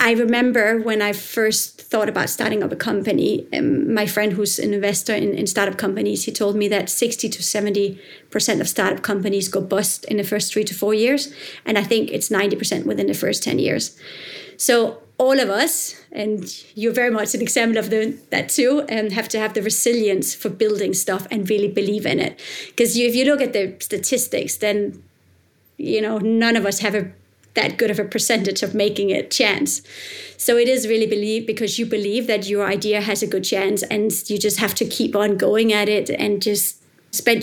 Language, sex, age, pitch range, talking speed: English, female, 30-49, 205-235 Hz, 205 wpm